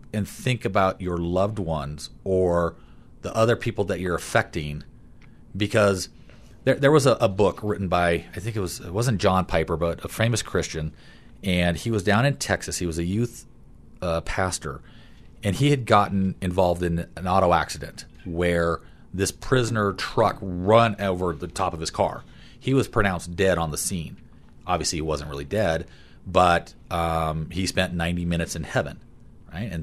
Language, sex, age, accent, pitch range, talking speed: English, male, 40-59, American, 85-105 Hz, 175 wpm